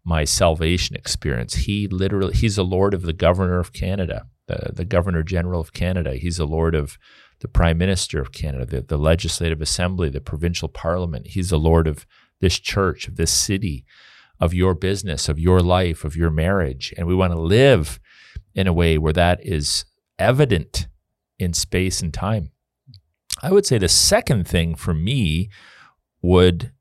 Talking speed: 175 wpm